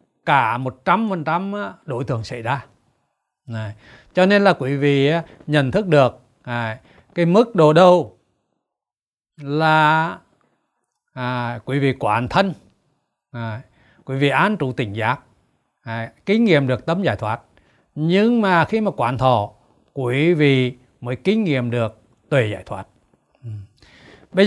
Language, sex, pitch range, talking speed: Vietnamese, male, 125-180 Hz, 125 wpm